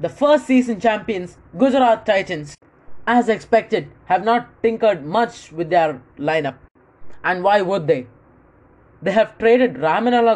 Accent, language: Indian, English